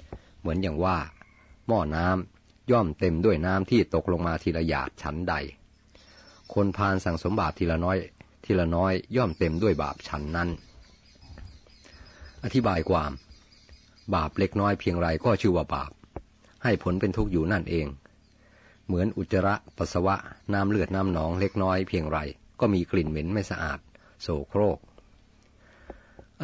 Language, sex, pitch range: Thai, male, 80-100 Hz